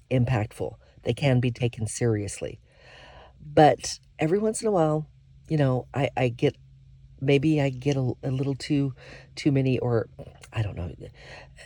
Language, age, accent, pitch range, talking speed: English, 50-69, American, 115-140 Hz, 160 wpm